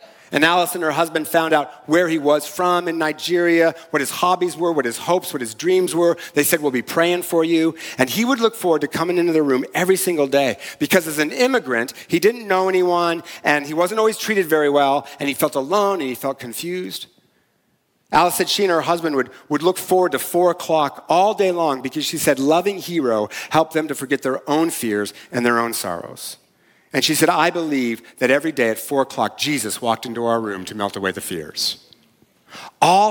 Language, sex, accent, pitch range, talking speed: English, male, American, 135-175 Hz, 220 wpm